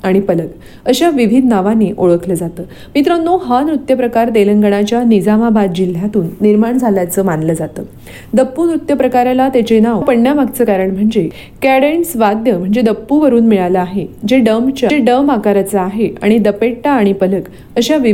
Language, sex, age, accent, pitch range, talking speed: Marathi, female, 40-59, native, 200-255 Hz, 45 wpm